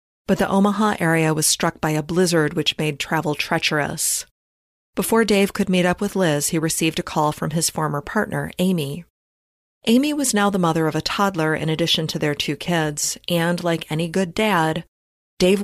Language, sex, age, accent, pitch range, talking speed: English, female, 30-49, American, 155-195 Hz, 190 wpm